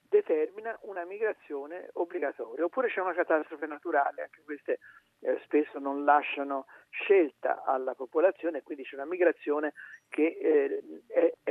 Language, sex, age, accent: Italian, male, 50-69, native